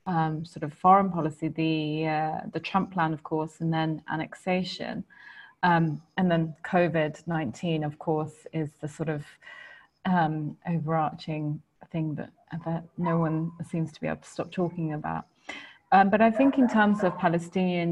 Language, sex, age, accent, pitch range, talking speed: English, female, 30-49, British, 160-180 Hz, 165 wpm